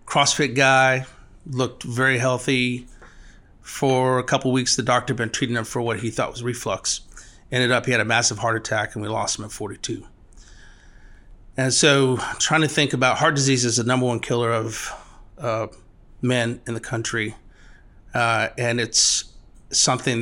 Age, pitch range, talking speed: 30-49, 115-130 Hz, 170 wpm